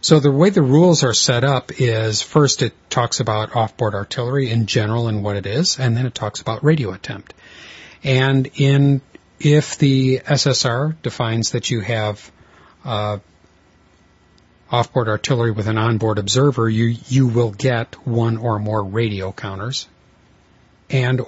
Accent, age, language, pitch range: American, 40-59, English, 105-130 Hz